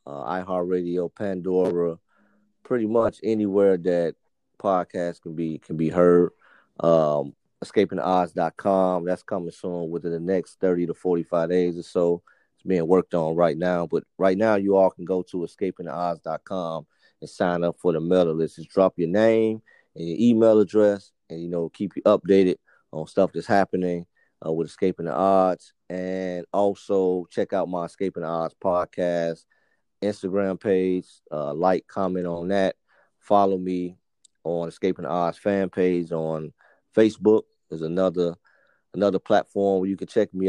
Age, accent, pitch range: 30-49, American, 85-100 Hz